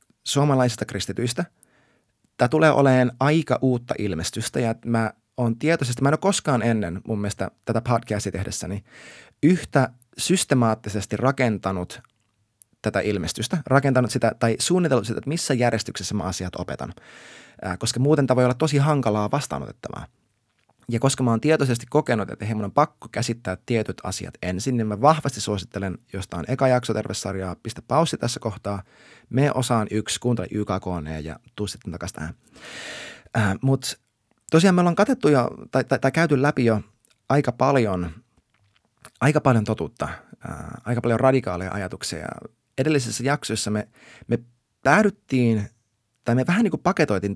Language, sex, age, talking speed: Finnish, male, 20-39, 150 wpm